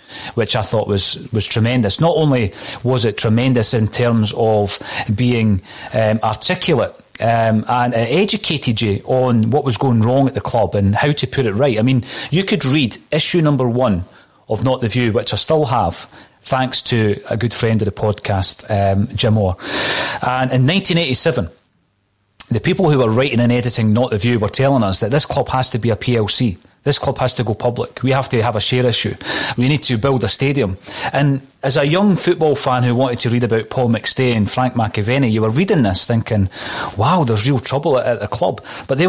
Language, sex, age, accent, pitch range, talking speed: English, male, 30-49, British, 110-135 Hz, 210 wpm